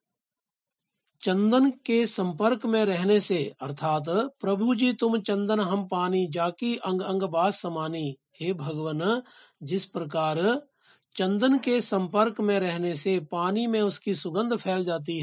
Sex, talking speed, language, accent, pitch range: male, 135 wpm, Hindi, native, 165-210 Hz